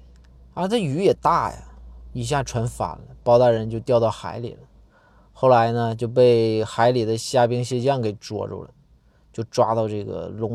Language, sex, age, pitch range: Chinese, male, 20-39, 115-145 Hz